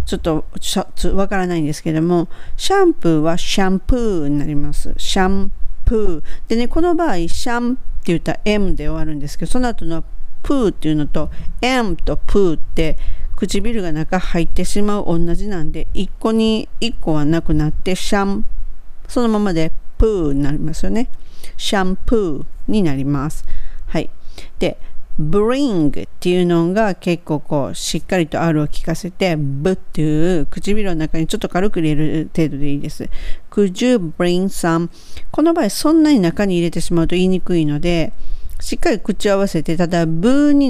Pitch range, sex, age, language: 155-205 Hz, female, 40-59, Japanese